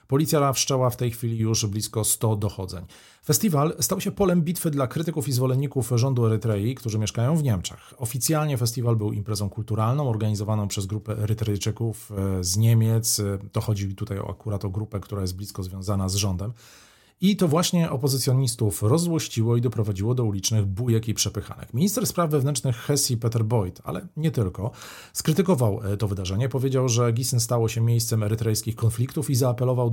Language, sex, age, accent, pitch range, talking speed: Polish, male, 40-59, native, 105-130 Hz, 165 wpm